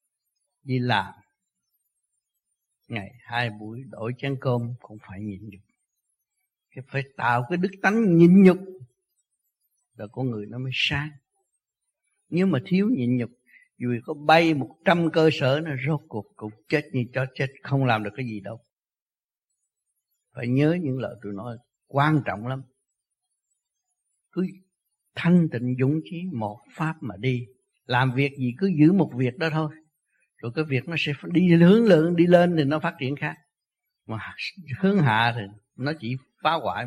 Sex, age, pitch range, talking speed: male, 60-79, 120-165 Hz, 165 wpm